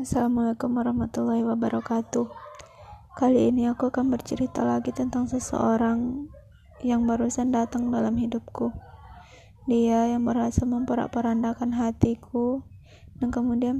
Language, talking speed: Indonesian, 105 wpm